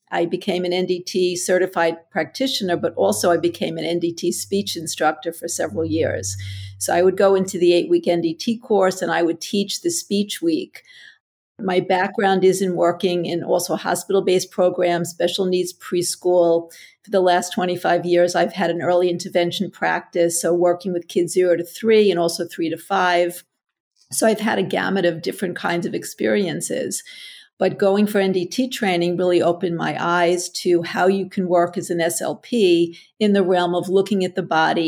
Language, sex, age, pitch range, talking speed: English, female, 50-69, 170-195 Hz, 175 wpm